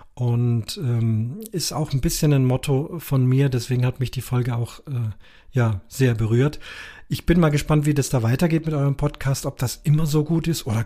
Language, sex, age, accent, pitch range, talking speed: German, male, 40-59, German, 120-145 Hz, 210 wpm